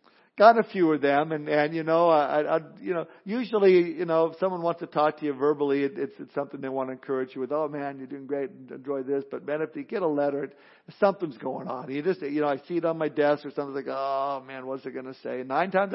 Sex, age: male, 50-69